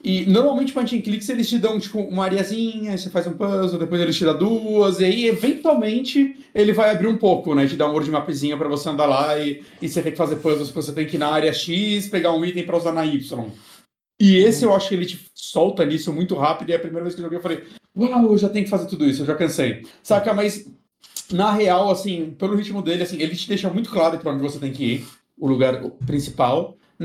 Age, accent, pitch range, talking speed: 30-49, Brazilian, 155-215 Hz, 250 wpm